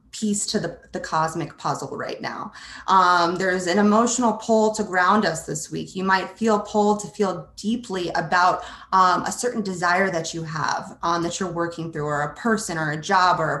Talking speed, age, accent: 205 wpm, 20-39, American